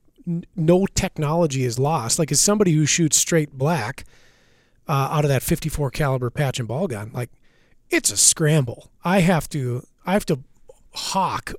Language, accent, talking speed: English, American, 165 wpm